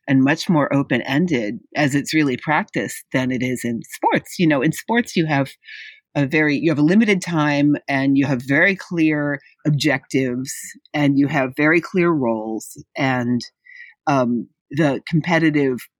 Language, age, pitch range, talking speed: English, 40-59, 130-160 Hz, 160 wpm